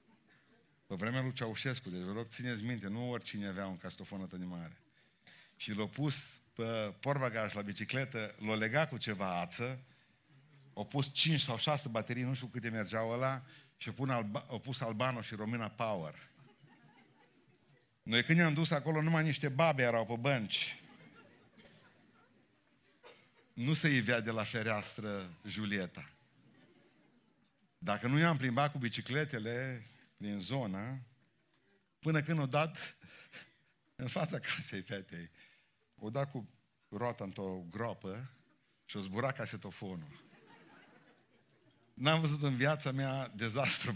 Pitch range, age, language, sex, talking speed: 110-140 Hz, 50-69, Romanian, male, 135 wpm